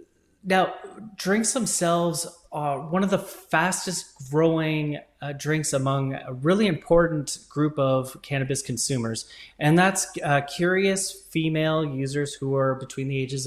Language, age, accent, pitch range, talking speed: English, 30-49, American, 130-175 Hz, 135 wpm